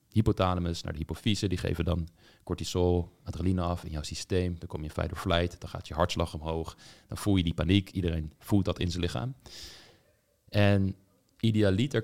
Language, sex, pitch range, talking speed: Dutch, male, 85-105 Hz, 195 wpm